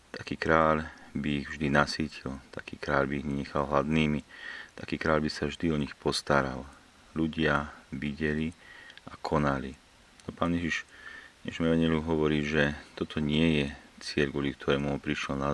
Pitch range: 70-75 Hz